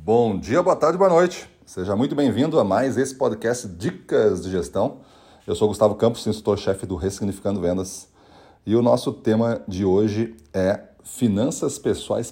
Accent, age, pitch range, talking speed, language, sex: Brazilian, 40-59, 95-120 Hz, 160 wpm, Portuguese, male